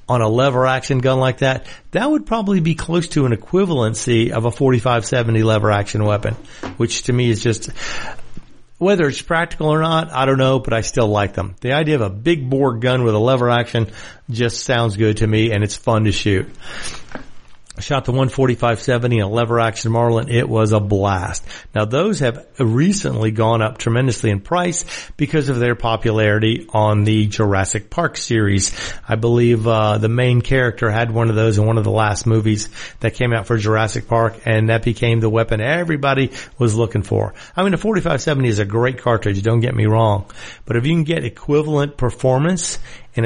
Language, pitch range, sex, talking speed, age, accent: English, 110-135 Hz, male, 200 wpm, 50-69, American